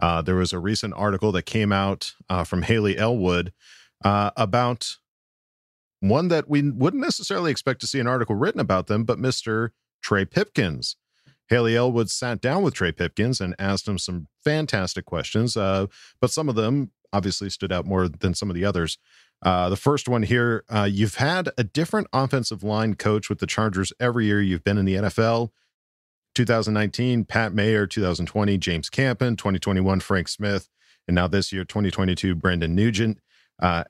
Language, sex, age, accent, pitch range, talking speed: English, male, 40-59, American, 95-120 Hz, 175 wpm